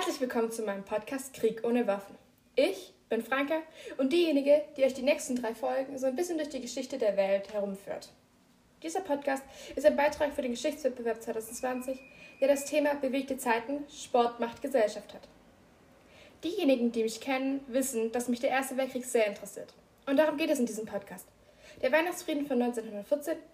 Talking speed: 175 wpm